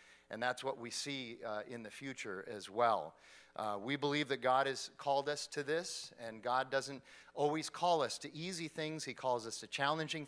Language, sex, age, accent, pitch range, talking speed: English, male, 40-59, American, 115-145 Hz, 205 wpm